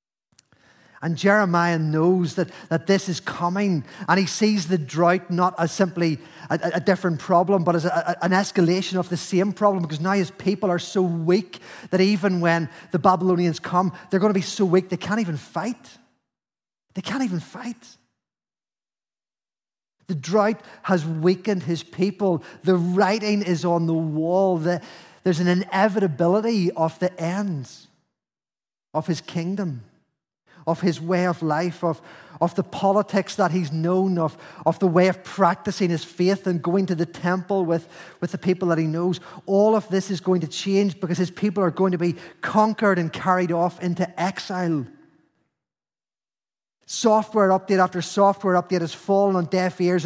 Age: 30-49